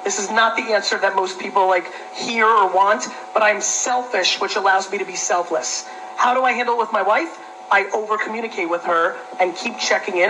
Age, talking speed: 40-59, 220 wpm